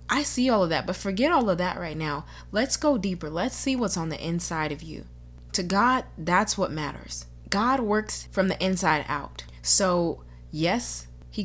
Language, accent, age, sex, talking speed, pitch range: English, American, 20-39, female, 195 wpm, 150-220 Hz